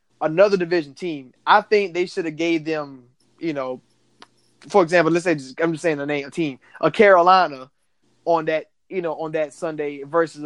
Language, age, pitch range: English, 20-39, 150-195 Hz